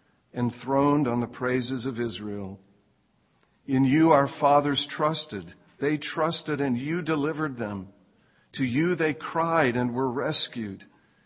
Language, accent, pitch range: English, American, 120-145 Hz